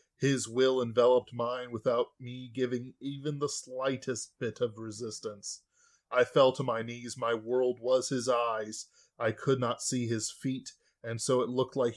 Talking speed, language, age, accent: 170 wpm, English, 20-39, American